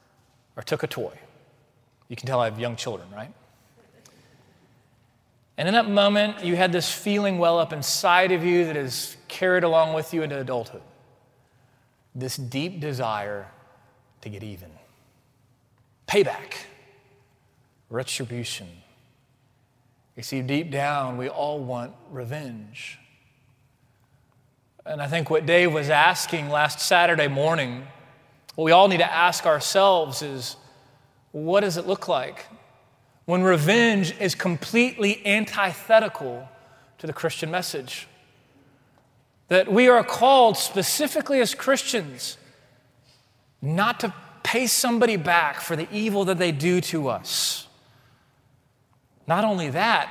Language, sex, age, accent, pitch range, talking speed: English, male, 30-49, American, 125-175 Hz, 125 wpm